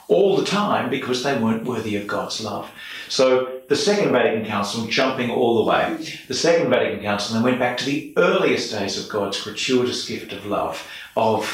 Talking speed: 190 wpm